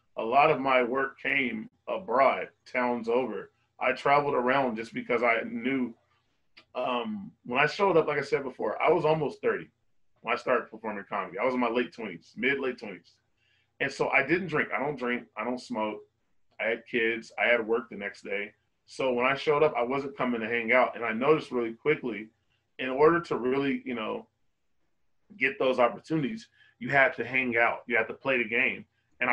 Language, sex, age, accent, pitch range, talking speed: English, male, 20-39, American, 120-150 Hz, 205 wpm